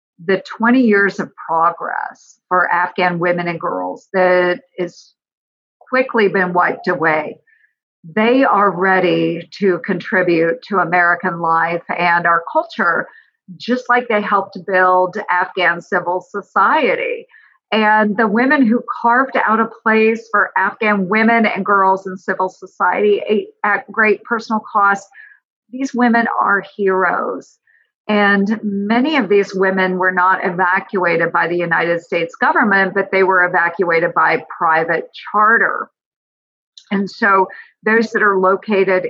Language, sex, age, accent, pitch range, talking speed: English, female, 50-69, American, 180-220 Hz, 130 wpm